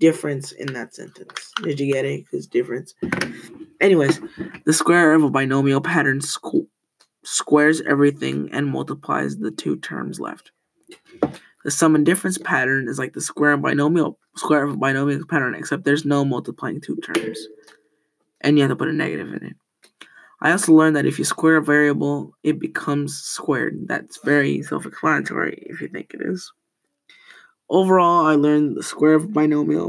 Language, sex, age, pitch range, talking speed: English, male, 20-39, 145-195 Hz, 165 wpm